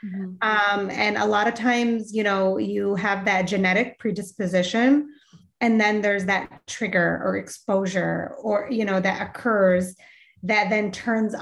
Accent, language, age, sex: American, English, 30-49, female